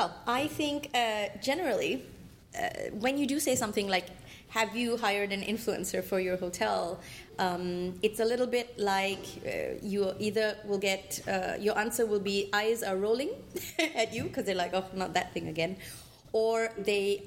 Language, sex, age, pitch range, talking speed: German, female, 30-49, 190-225 Hz, 175 wpm